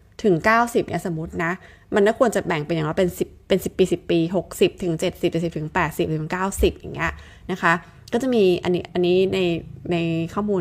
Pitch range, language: 170-205 Hz, Thai